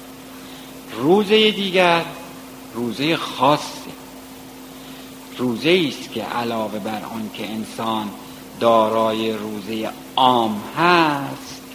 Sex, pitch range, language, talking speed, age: male, 110-165 Hz, Persian, 75 wpm, 60-79